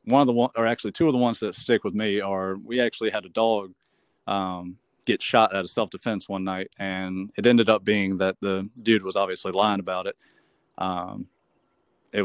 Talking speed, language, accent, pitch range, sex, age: 210 wpm, English, American, 95-110 Hz, male, 30-49